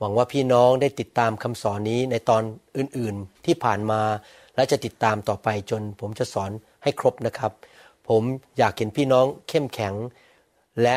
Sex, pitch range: male, 115-145 Hz